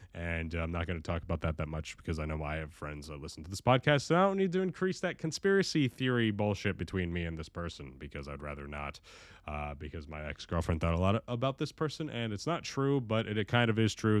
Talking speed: 260 wpm